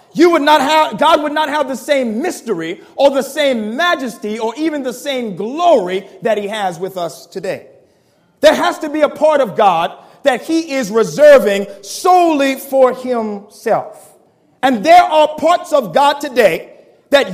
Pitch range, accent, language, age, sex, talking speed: 235-310 Hz, American, English, 40-59, male, 170 wpm